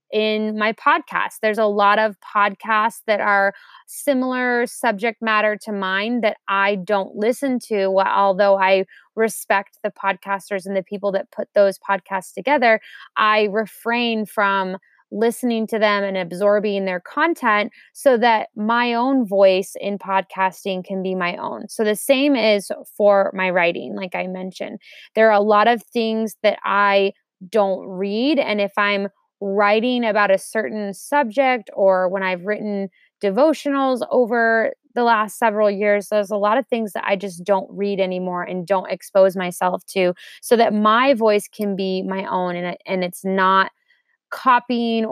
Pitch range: 195-230 Hz